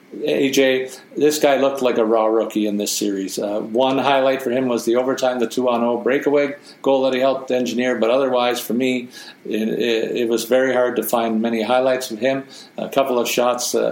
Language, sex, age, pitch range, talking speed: English, male, 50-69, 115-130 Hz, 205 wpm